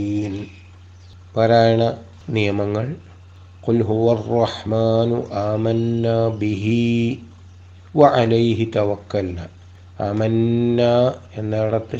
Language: Malayalam